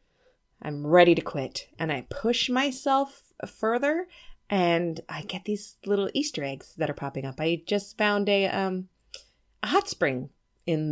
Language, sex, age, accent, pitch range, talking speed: English, female, 30-49, American, 155-225 Hz, 160 wpm